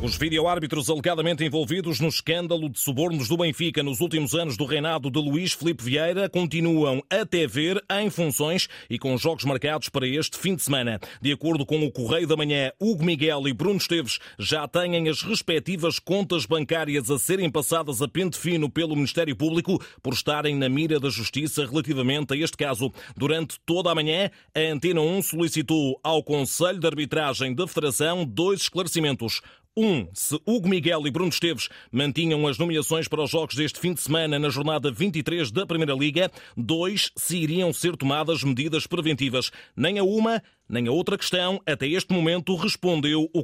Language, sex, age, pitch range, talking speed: Portuguese, male, 30-49, 145-170 Hz, 180 wpm